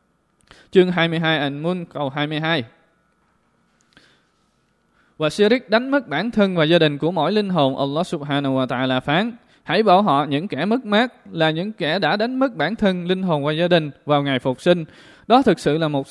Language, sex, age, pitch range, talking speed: Vietnamese, male, 20-39, 145-195 Hz, 195 wpm